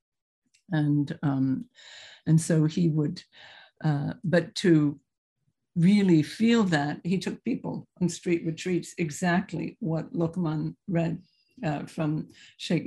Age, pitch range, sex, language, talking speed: 60-79, 155-185 Hz, female, English, 115 wpm